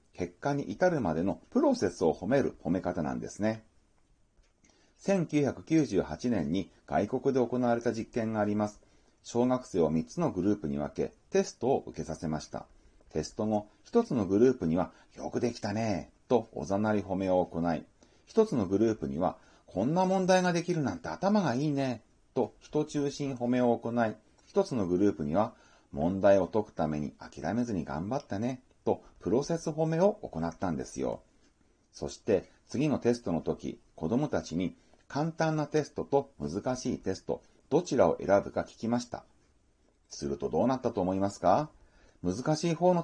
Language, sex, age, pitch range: Japanese, male, 40-59, 100-145 Hz